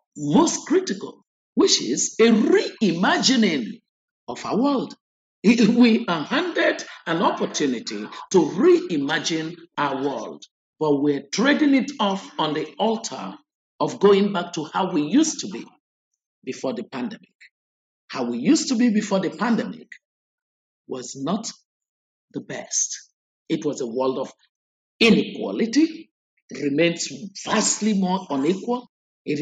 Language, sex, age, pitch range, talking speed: German, male, 50-69, 155-260 Hz, 125 wpm